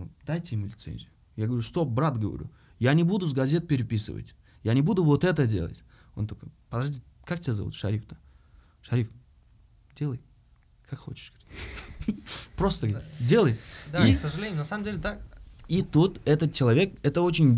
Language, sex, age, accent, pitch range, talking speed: Russian, male, 20-39, native, 110-150 Hz, 155 wpm